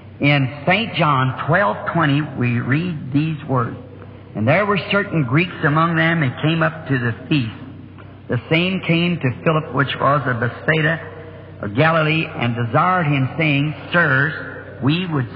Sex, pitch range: male, 120-170 Hz